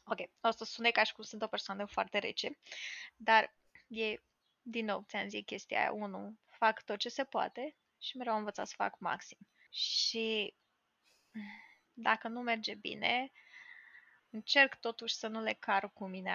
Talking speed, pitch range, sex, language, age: 165 wpm, 185-230 Hz, female, Romanian, 20-39